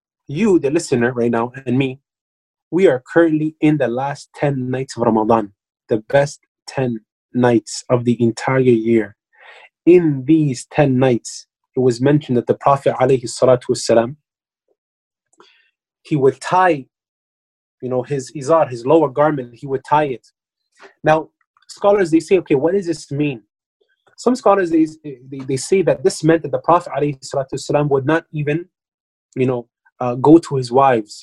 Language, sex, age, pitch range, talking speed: English, male, 20-39, 125-160 Hz, 160 wpm